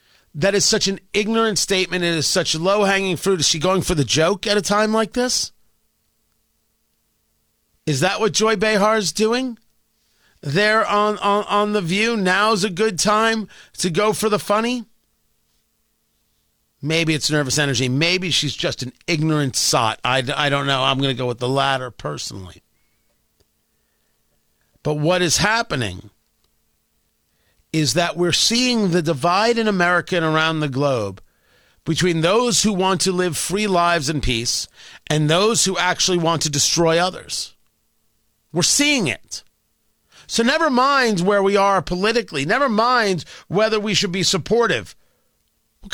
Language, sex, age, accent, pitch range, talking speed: English, male, 40-59, American, 140-210 Hz, 155 wpm